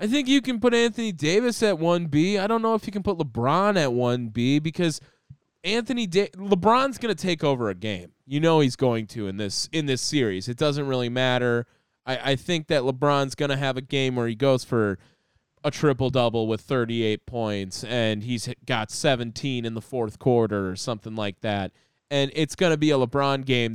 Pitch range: 115-155 Hz